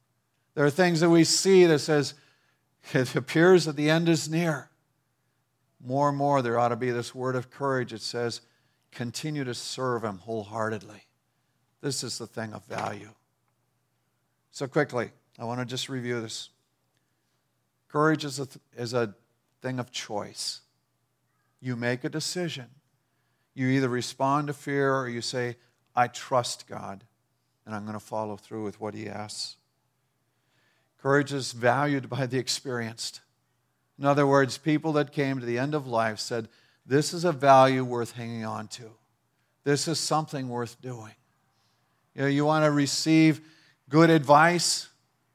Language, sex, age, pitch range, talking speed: English, male, 50-69, 120-140 Hz, 155 wpm